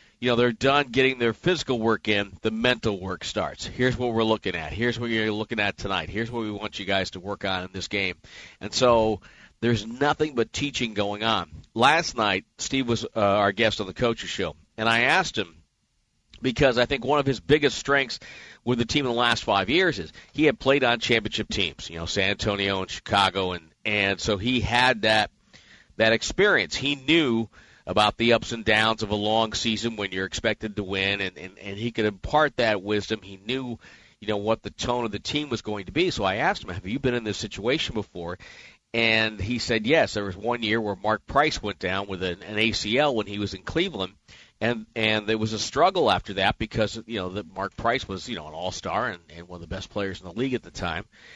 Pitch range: 100-120 Hz